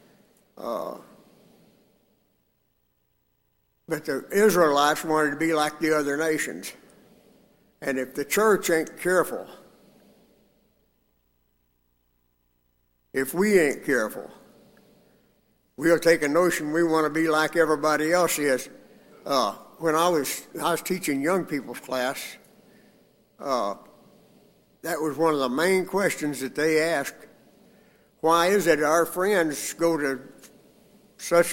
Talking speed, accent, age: 120 wpm, American, 60-79